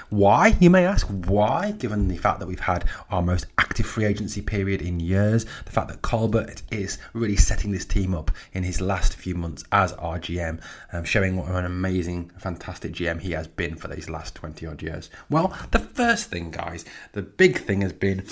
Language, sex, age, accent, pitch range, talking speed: English, male, 20-39, British, 90-120 Hz, 205 wpm